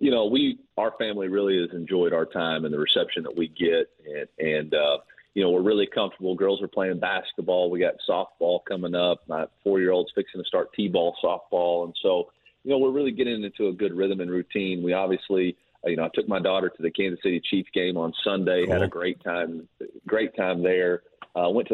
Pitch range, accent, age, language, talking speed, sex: 85-105 Hz, American, 30-49, English, 220 wpm, male